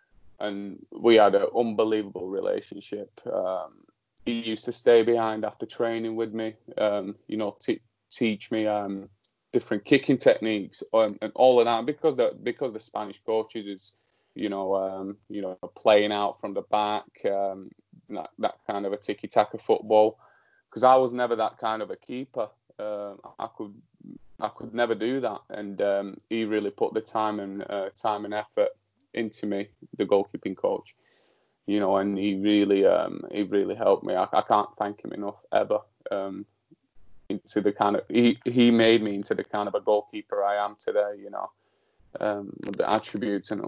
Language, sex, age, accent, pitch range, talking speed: English, male, 20-39, British, 100-120 Hz, 180 wpm